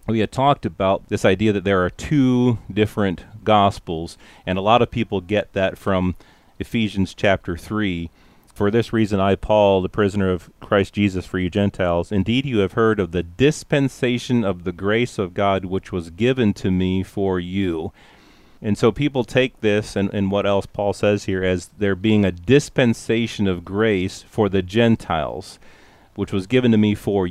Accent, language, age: American, English, 40-59